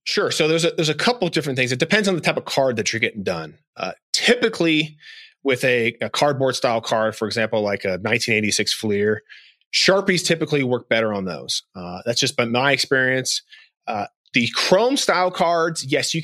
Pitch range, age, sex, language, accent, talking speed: 115-155 Hz, 30-49, male, English, American, 190 wpm